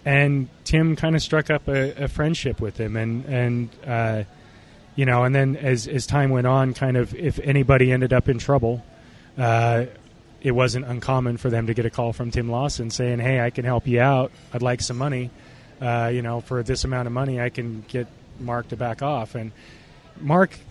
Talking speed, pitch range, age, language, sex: 210 wpm, 115-135 Hz, 20-39, English, male